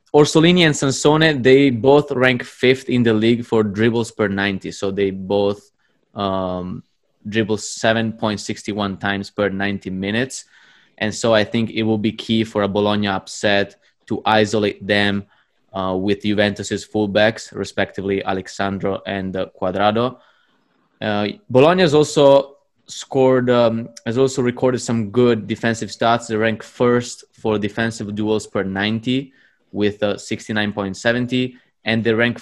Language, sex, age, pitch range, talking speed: English, male, 20-39, 100-115 Hz, 140 wpm